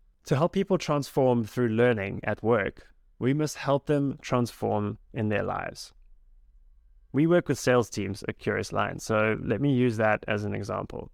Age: 20-39